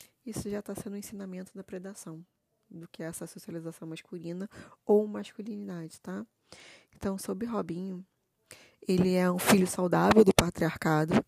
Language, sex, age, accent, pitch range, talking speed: Portuguese, female, 20-39, Brazilian, 175-205 Hz, 145 wpm